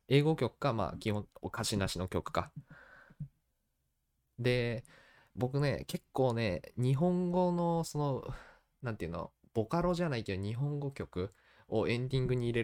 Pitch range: 95-150 Hz